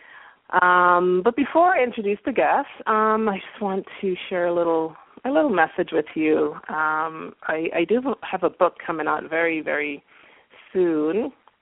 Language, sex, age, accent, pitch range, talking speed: English, female, 30-49, American, 155-185 Hz, 165 wpm